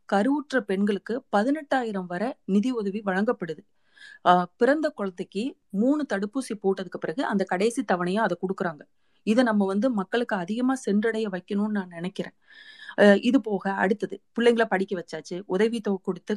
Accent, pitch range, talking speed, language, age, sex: native, 190-235 Hz, 85 wpm, Tamil, 30-49, female